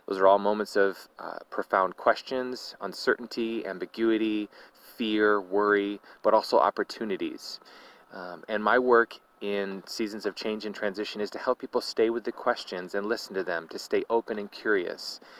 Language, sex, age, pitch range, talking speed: English, male, 30-49, 105-125 Hz, 165 wpm